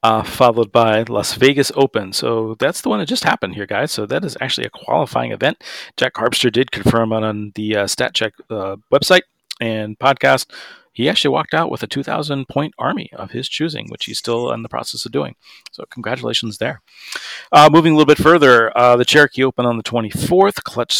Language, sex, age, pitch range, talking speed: English, male, 40-59, 110-140 Hz, 200 wpm